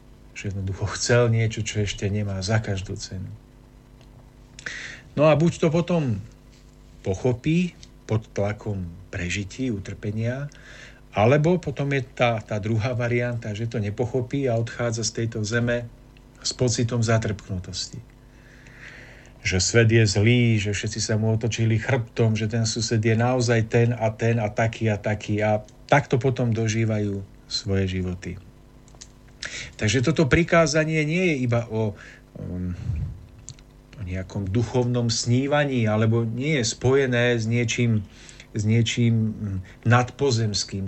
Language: Slovak